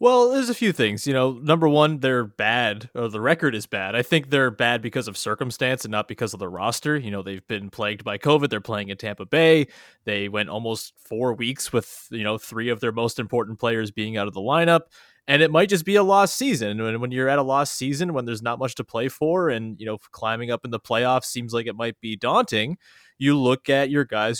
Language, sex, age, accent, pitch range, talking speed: English, male, 20-39, American, 110-135 Hz, 250 wpm